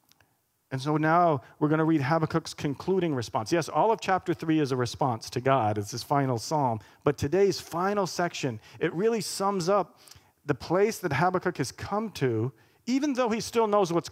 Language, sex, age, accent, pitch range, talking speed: English, male, 40-59, American, 125-165 Hz, 190 wpm